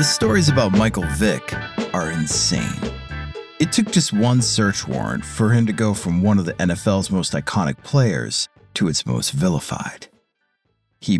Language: English